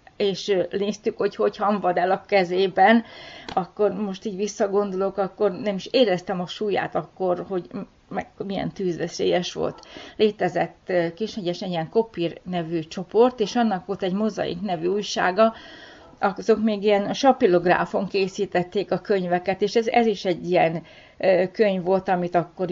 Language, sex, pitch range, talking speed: Hungarian, female, 175-205 Hz, 145 wpm